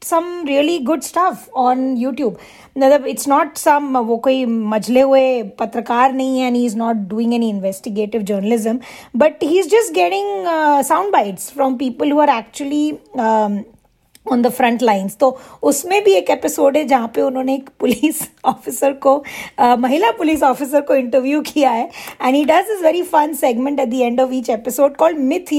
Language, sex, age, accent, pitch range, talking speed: Hindi, female, 20-39, native, 250-310 Hz, 185 wpm